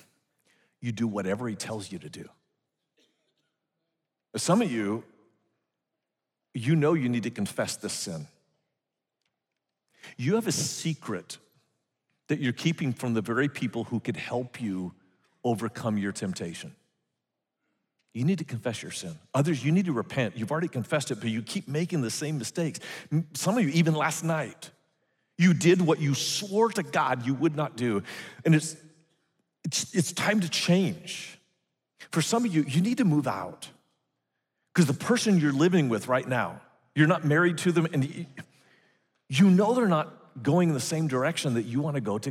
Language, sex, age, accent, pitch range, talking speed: English, male, 50-69, American, 130-180 Hz, 170 wpm